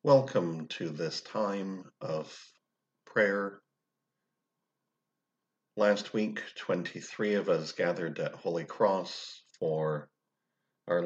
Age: 50-69